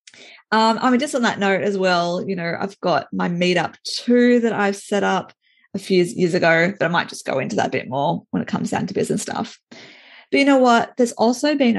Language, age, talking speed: English, 20-39, 245 wpm